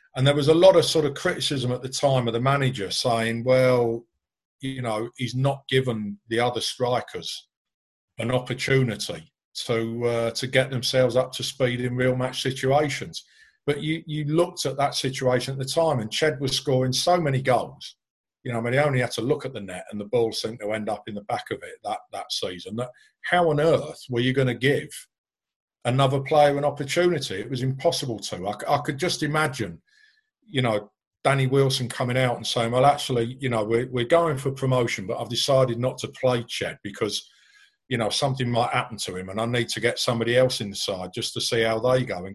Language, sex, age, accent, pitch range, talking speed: English, male, 50-69, British, 120-145 Hz, 215 wpm